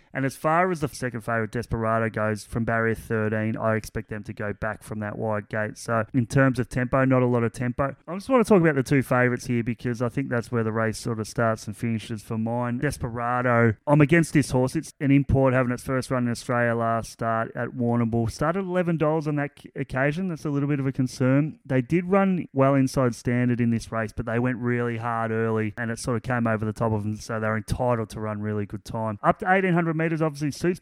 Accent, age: Australian, 20-39